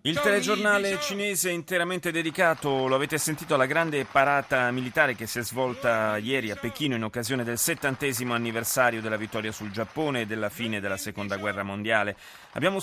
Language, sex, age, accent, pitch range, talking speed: Italian, male, 40-59, native, 120-160 Hz, 175 wpm